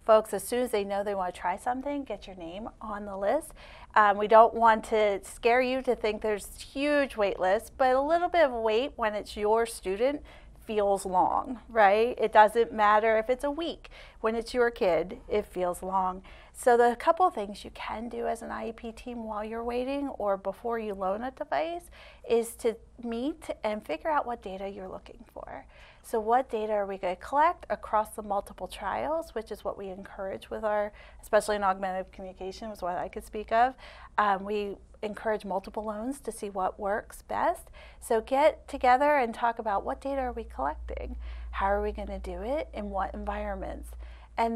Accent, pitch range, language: American, 200-245 Hz, English